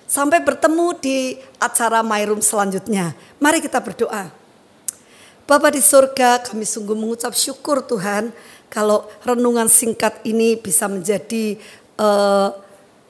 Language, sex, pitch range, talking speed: Indonesian, female, 215-250 Hz, 115 wpm